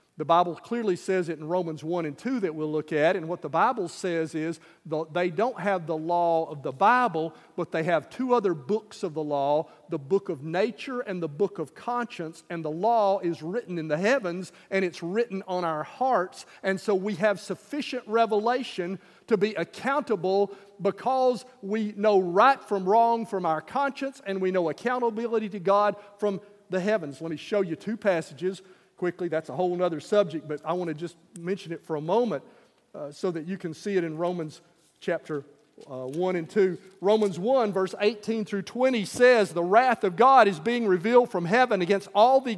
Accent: American